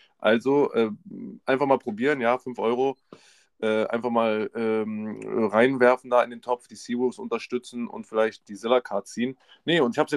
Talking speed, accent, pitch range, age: 185 wpm, German, 115-135 Hz, 20-39